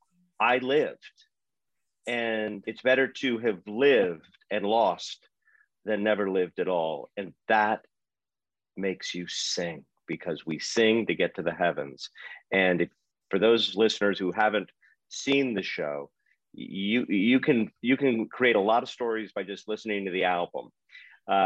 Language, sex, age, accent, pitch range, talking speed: English, male, 40-59, American, 90-120 Hz, 155 wpm